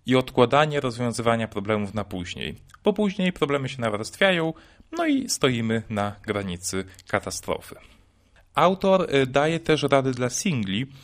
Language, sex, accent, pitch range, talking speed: Polish, male, native, 105-140 Hz, 125 wpm